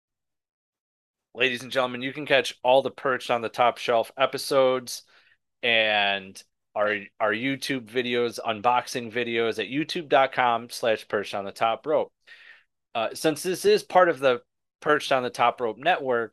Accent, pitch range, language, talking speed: American, 110-135 Hz, English, 155 wpm